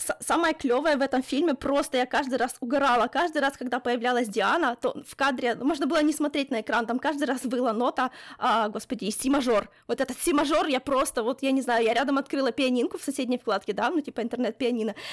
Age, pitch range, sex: 20-39, 245-305 Hz, female